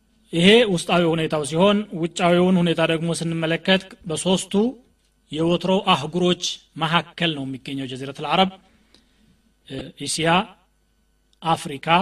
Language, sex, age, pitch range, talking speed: Amharic, male, 30-49, 160-195 Hz, 95 wpm